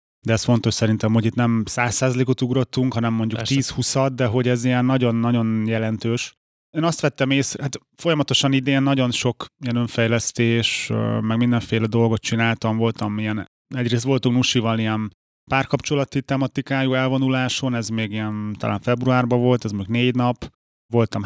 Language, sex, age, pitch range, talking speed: Hungarian, male, 30-49, 115-130 Hz, 150 wpm